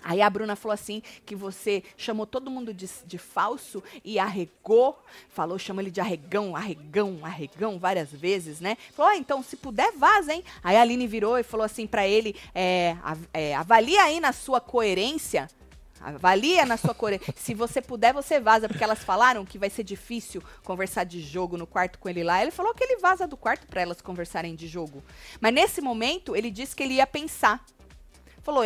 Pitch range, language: 185-275 Hz, Portuguese